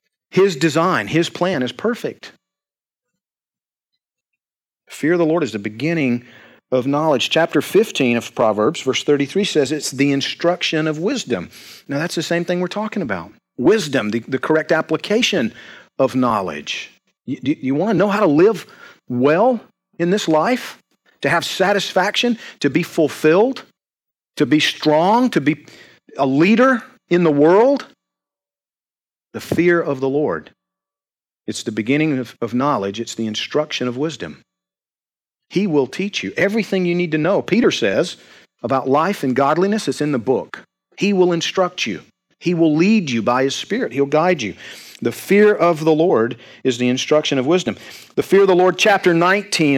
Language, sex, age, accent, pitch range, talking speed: English, male, 40-59, American, 135-185 Hz, 165 wpm